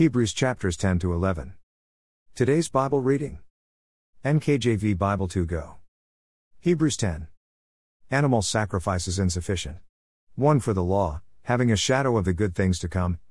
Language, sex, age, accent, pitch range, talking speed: English, male, 50-69, American, 85-115 Hz, 130 wpm